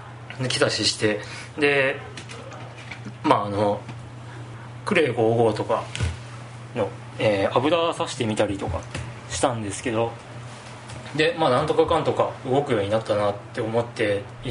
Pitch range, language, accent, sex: 110-130 Hz, Japanese, native, male